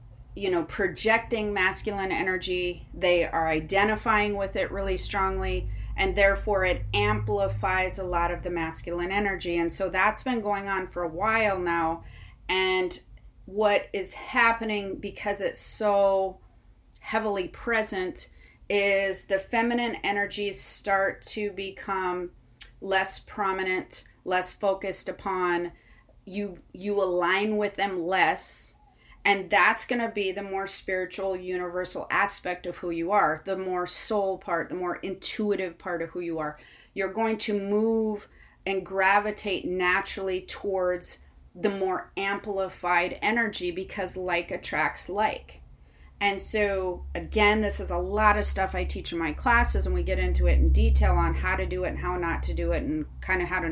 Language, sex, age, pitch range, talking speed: English, female, 30-49, 170-205 Hz, 155 wpm